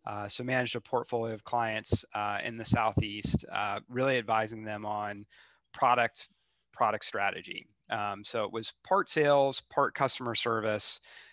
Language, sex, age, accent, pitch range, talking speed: English, male, 30-49, American, 105-125 Hz, 150 wpm